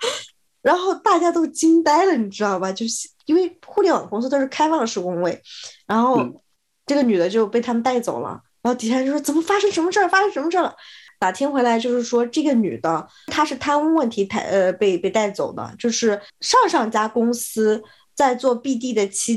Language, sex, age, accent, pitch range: Chinese, female, 20-39, native, 200-270 Hz